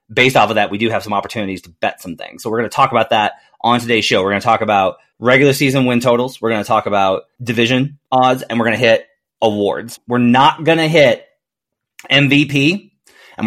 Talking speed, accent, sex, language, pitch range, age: 230 wpm, American, male, English, 105-135 Hz, 30-49